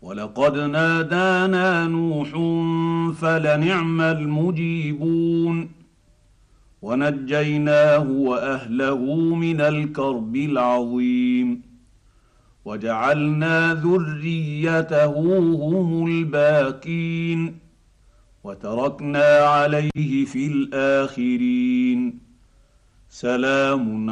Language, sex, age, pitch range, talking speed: Arabic, male, 50-69, 135-165 Hz, 45 wpm